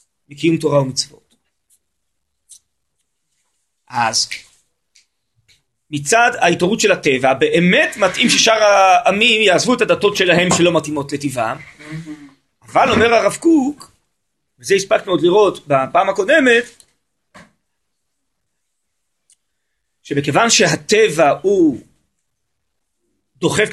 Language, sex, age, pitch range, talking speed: Hebrew, male, 30-49, 140-220 Hz, 85 wpm